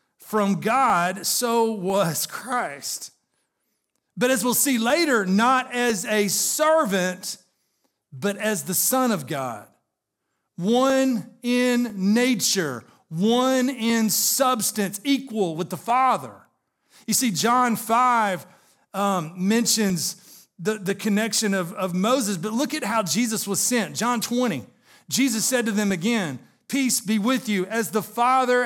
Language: English